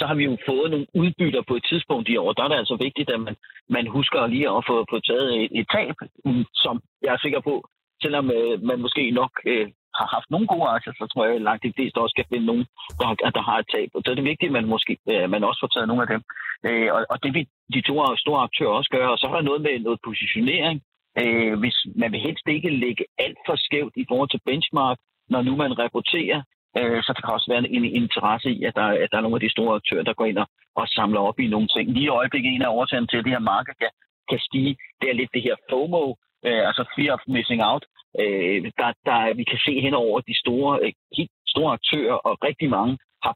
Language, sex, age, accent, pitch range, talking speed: Danish, male, 40-59, native, 120-145 Hz, 265 wpm